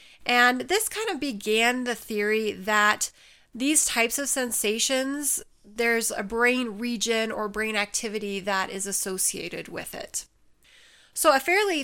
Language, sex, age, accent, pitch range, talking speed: English, female, 30-49, American, 210-245 Hz, 135 wpm